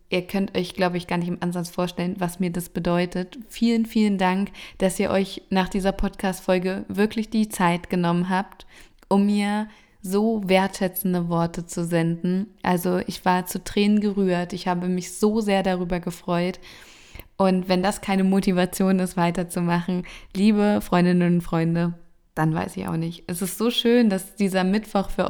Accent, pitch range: German, 180-195 Hz